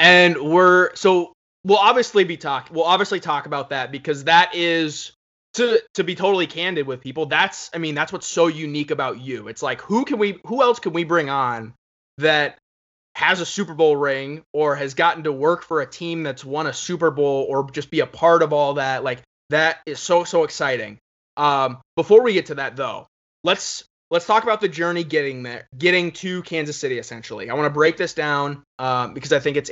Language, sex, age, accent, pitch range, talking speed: English, male, 20-39, American, 145-175 Hz, 215 wpm